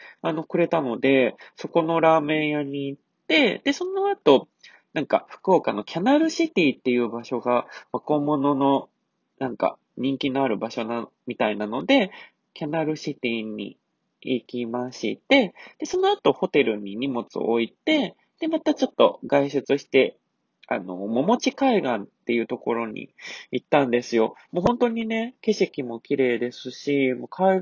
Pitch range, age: 120-175 Hz, 20-39